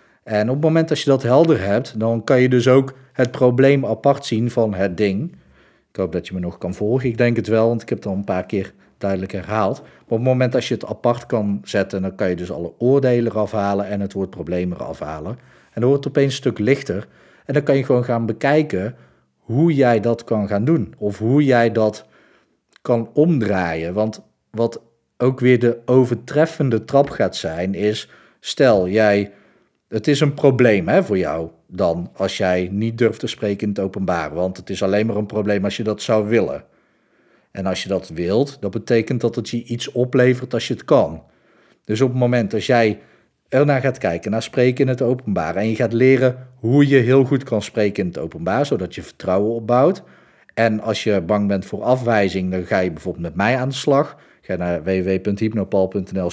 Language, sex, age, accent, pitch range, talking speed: Dutch, male, 40-59, Dutch, 100-125 Hz, 215 wpm